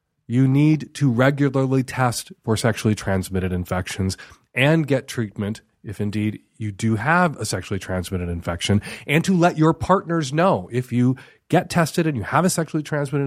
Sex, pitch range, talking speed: male, 115-155 Hz, 165 wpm